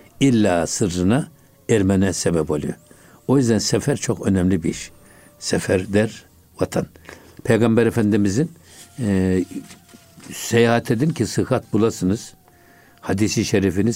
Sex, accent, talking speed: male, native, 110 wpm